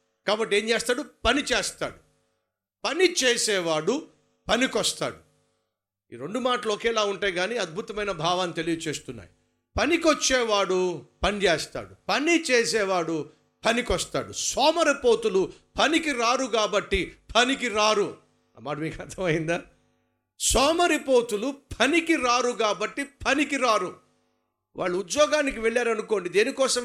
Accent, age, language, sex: native, 50-69, Telugu, male